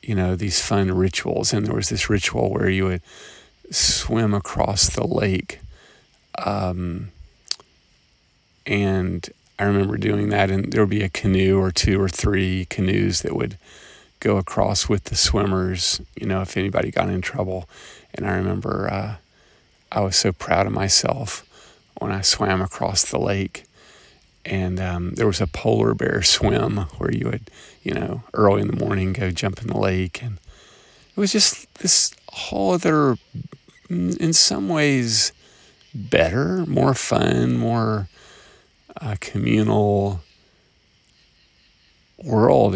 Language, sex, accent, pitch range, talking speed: English, male, American, 95-105 Hz, 145 wpm